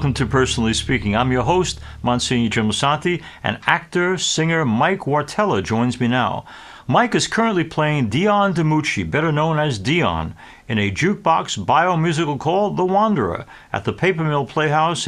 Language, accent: English, American